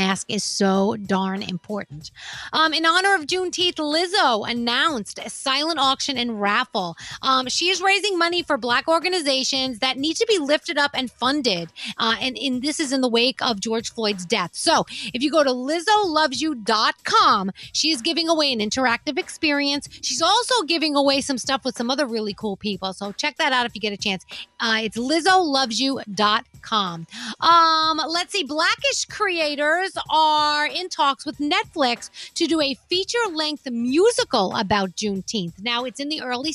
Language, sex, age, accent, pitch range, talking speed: English, female, 30-49, American, 225-315 Hz, 170 wpm